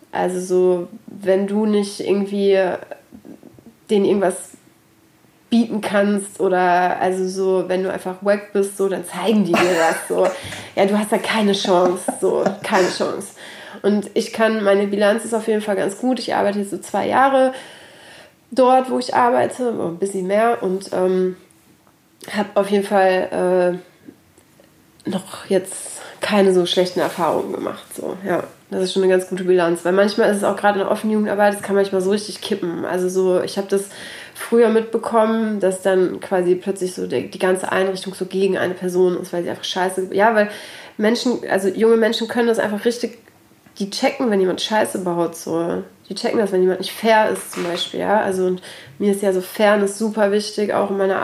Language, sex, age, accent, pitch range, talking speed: German, female, 30-49, German, 185-210 Hz, 190 wpm